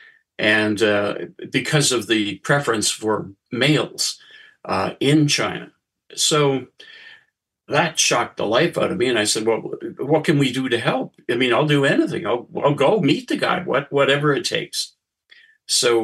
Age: 60-79